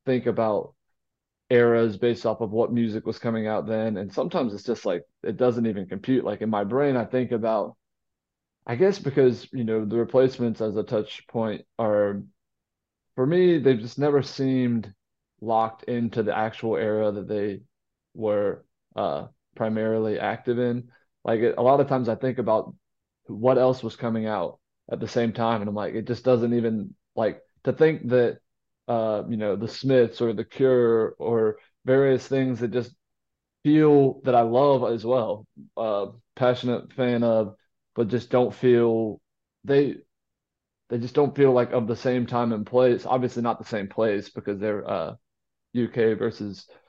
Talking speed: 175 wpm